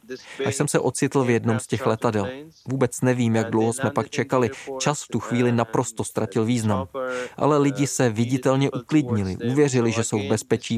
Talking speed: 185 wpm